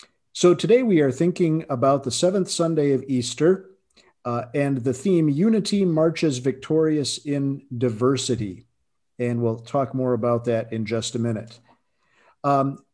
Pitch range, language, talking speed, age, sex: 125-160 Hz, English, 145 wpm, 50-69, male